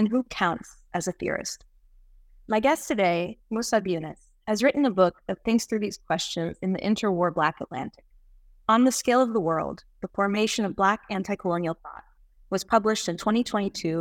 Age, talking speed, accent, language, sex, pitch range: 30-49, 175 wpm, American, English, female, 175-220 Hz